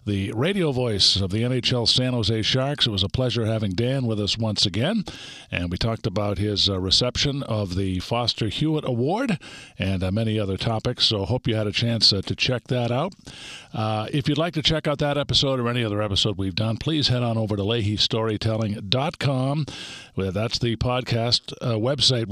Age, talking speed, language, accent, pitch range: 50-69, 195 wpm, English, American, 105-130 Hz